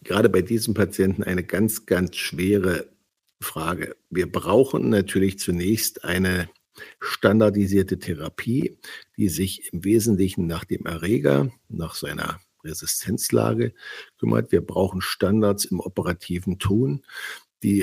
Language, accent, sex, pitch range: German, German, male, 90-105 Hz